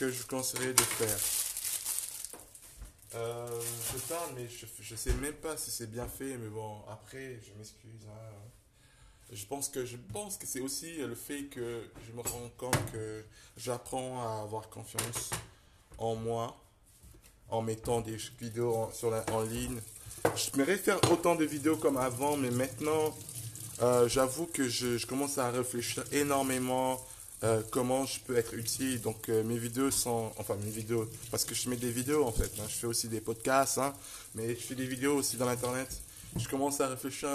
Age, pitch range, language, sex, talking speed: 20-39, 110-135 Hz, French, male, 185 wpm